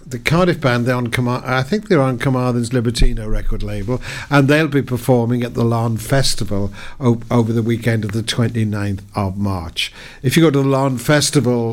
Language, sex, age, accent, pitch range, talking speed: English, male, 60-79, British, 105-130 Hz, 185 wpm